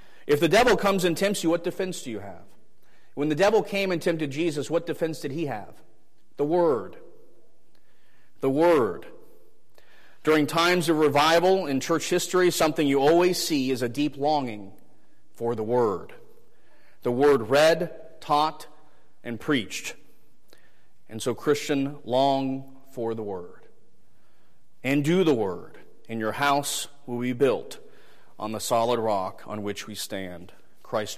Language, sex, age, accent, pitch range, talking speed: English, male, 40-59, American, 130-170 Hz, 150 wpm